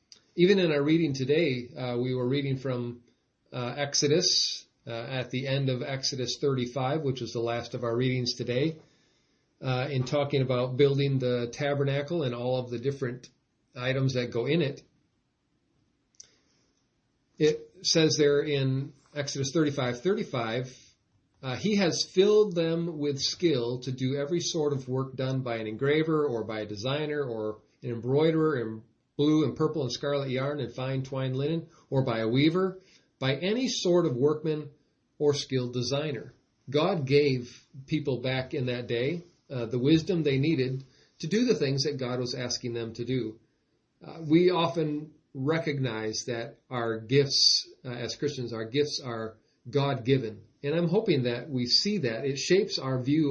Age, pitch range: 40-59, 125-150 Hz